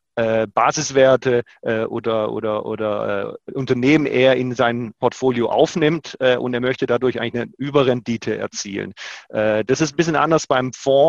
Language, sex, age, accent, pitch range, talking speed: German, male, 30-49, German, 115-140 Hz, 160 wpm